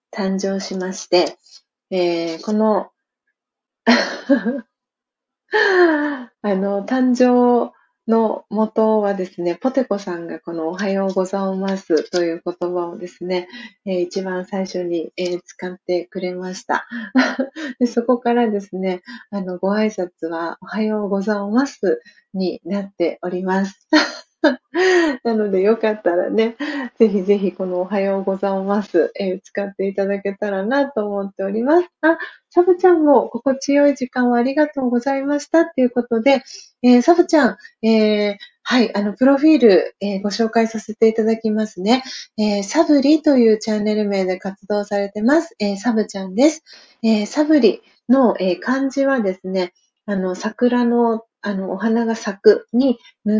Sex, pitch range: female, 195-255 Hz